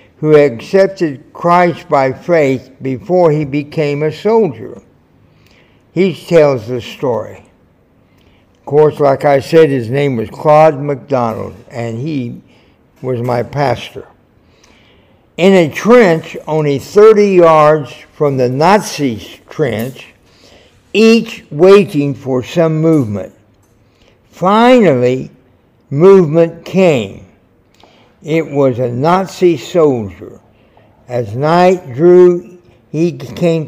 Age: 60-79